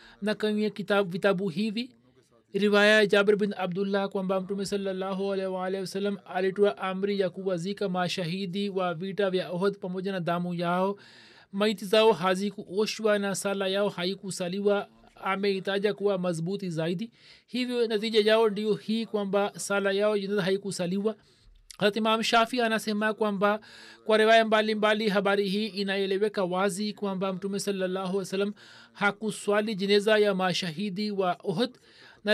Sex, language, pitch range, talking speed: male, Swahili, 190-210 Hz, 145 wpm